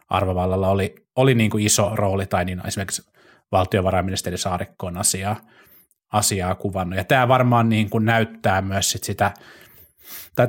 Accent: native